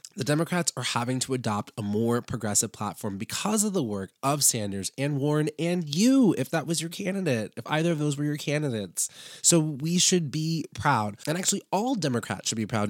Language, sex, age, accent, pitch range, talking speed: English, male, 20-39, American, 115-150 Hz, 205 wpm